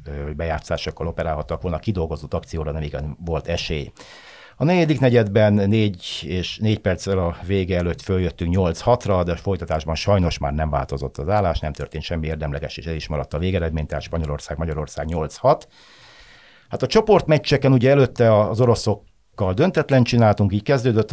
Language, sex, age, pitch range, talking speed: Hungarian, male, 60-79, 80-105 Hz, 160 wpm